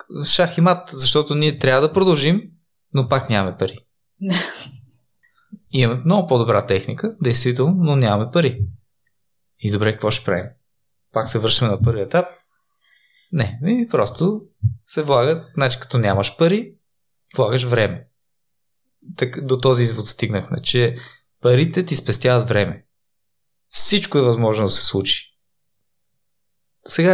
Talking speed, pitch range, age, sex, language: 125 wpm, 120-165 Hz, 20-39, male, Bulgarian